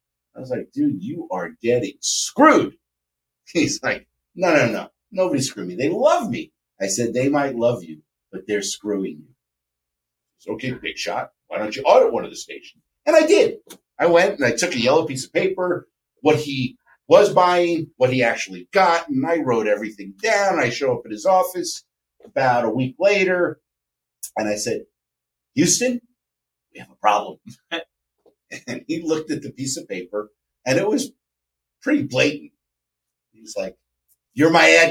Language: English